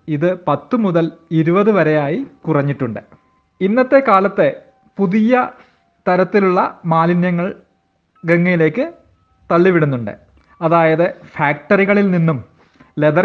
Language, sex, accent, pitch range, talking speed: Malayalam, male, native, 150-185 Hz, 75 wpm